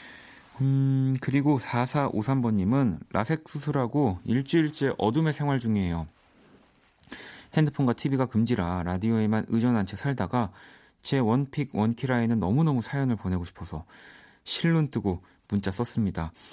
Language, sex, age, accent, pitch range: Korean, male, 40-59, native, 95-130 Hz